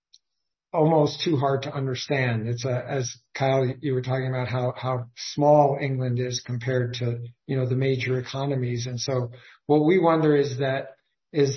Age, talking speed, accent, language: 50-69, 170 wpm, American, English